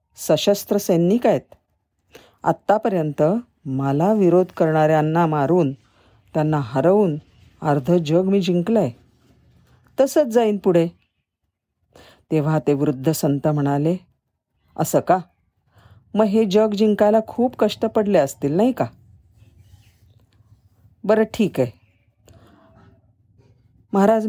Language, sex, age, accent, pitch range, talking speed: Marathi, female, 40-59, native, 120-200 Hz, 90 wpm